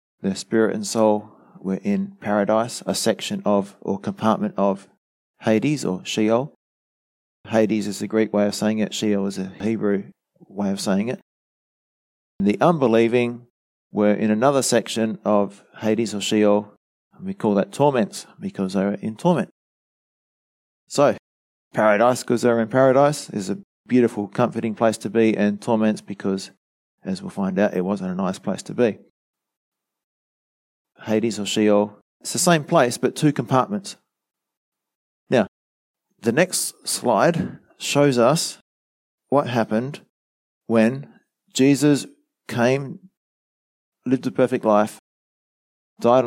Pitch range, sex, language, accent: 105-135 Hz, male, English, Australian